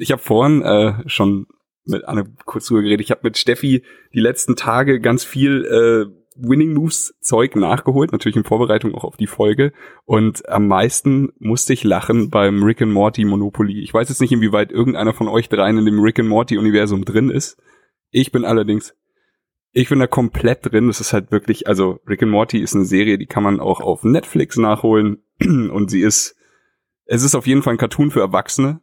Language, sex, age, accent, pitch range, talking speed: German, male, 10-29, German, 105-120 Hz, 195 wpm